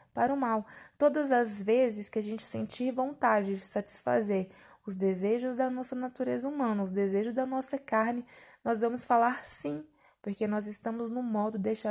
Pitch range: 195-240 Hz